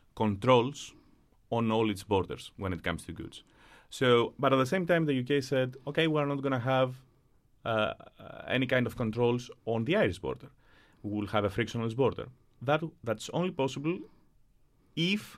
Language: English